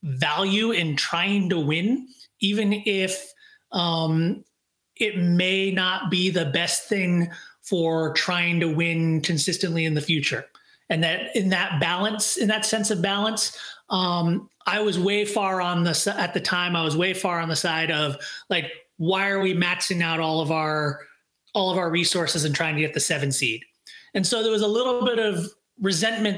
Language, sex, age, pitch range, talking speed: English, male, 30-49, 165-210 Hz, 180 wpm